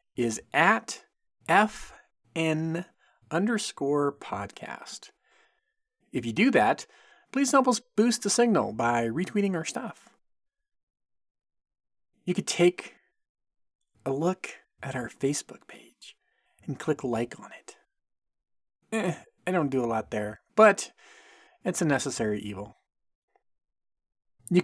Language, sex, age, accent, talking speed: English, male, 40-59, American, 110 wpm